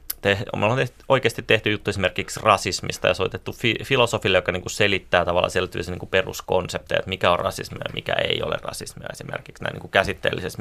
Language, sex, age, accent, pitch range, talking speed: Finnish, male, 30-49, native, 90-105 Hz, 185 wpm